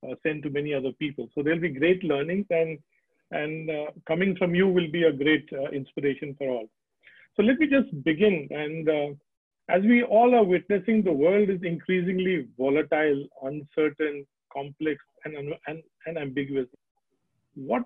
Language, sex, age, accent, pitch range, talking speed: English, male, 40-59, Indian, 155-215 Hz, 165 wpm